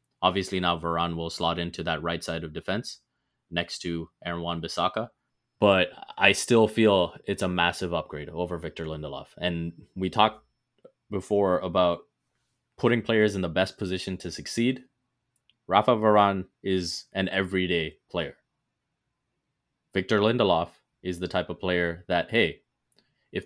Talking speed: 140 wpm